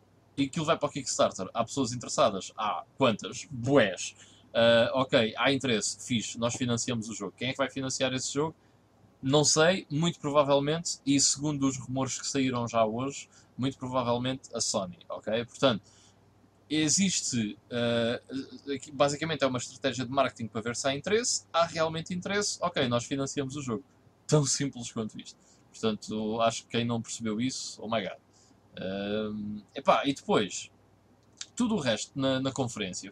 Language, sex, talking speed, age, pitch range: Portuguese, male, 165 wpm, 20-39, 115-155 Hz